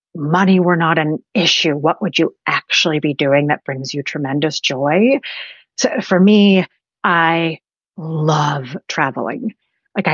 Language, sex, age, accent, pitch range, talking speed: English, female, 30-49, American, 145-180 Hz, 135 wpm